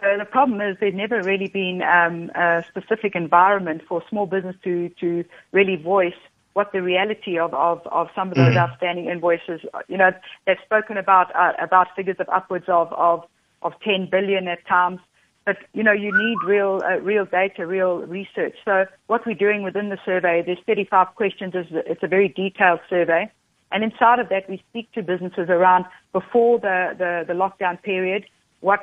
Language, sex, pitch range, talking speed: English, female, 175-200 Hz, 185 wpm